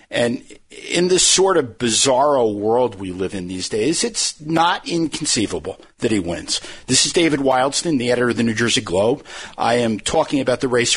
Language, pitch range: English, 110-140 Hz